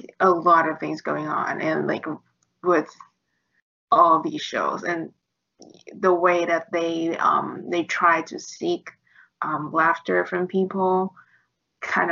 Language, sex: Vietnamese, female